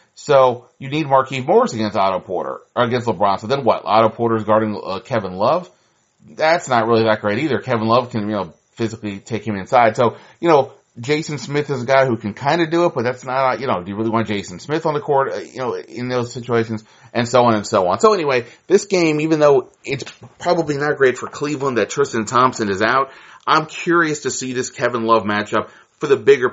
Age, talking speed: 30-49, 235 wpm